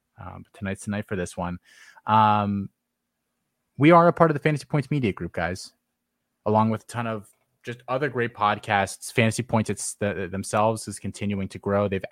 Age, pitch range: 20-39, 95-120 Hz